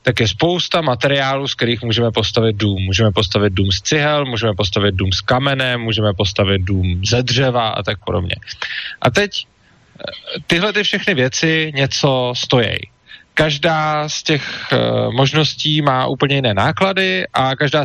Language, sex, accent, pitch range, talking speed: Czech, male, native, 110-150 Hz, 155 wpm